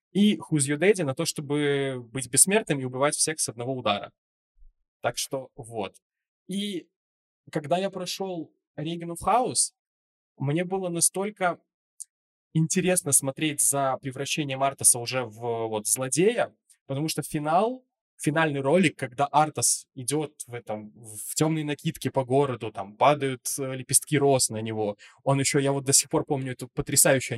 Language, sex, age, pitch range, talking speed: Russian, male, 20-39, 130-155 Hz, 150 wpm